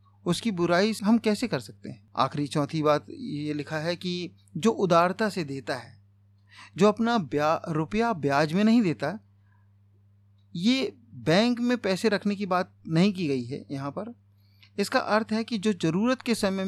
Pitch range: 130-190 Hz